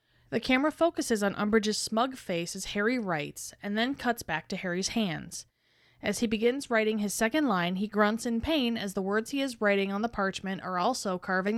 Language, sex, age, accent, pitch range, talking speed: English, female, 20-39, American, 190-240 Hz, 205 wpm